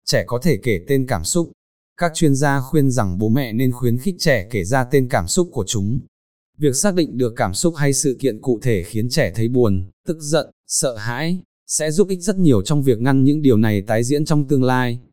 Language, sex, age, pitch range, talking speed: Vietnamese, male, 20-39, 110-145 Hz, 240 wpm